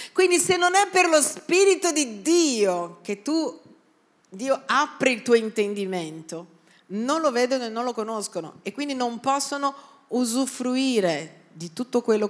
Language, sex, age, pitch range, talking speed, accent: Italian, female, 40-59, 185-280 Hz, 150 wpm, native